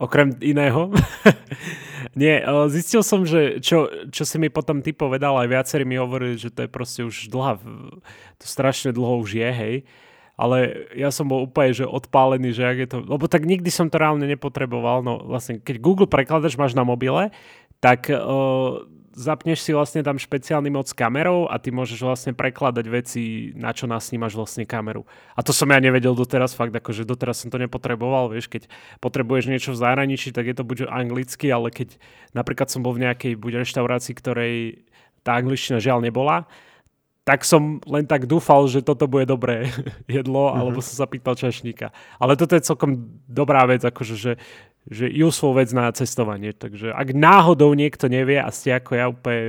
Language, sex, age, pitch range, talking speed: Slovak, male, 20-39, 120-140 Hz, 180 wpm